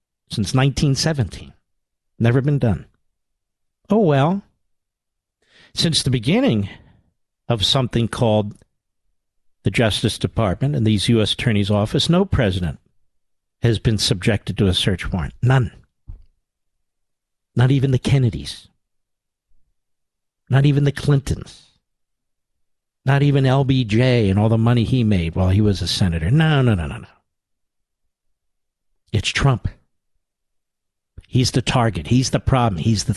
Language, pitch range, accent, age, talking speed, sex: English, 95-140 Hz, American, 50-69, 125 wpm, male